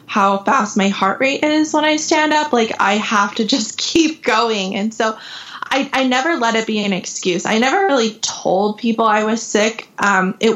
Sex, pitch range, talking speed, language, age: female, 195-235 Hz, 210 wpm, English, 20-39